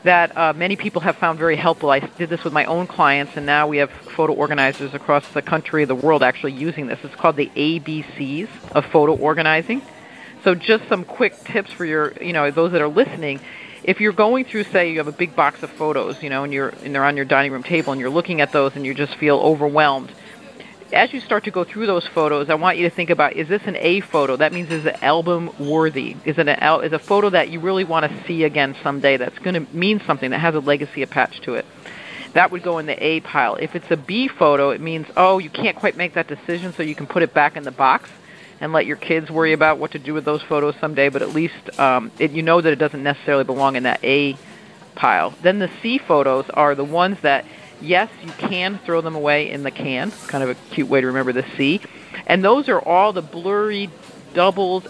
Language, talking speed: English, 250 wpm